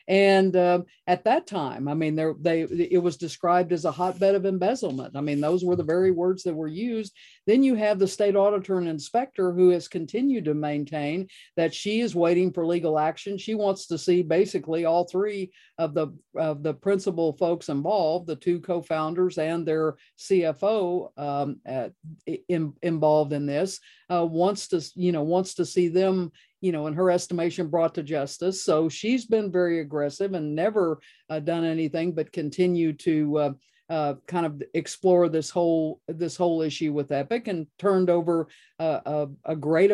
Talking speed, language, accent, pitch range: 180 wpm, English, American, 160-185 Hz